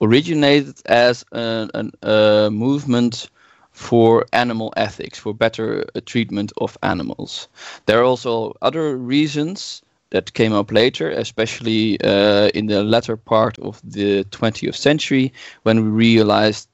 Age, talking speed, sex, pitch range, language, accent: 20-39, 130 wpm, male, 105-125 Hz, English, Dutch